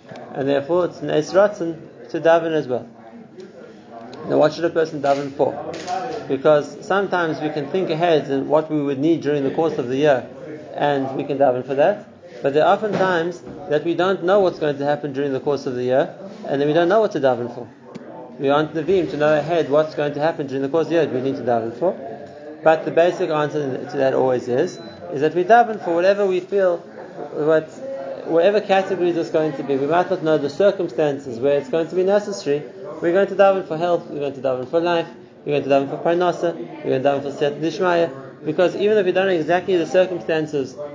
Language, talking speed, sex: English, 230 wpm, male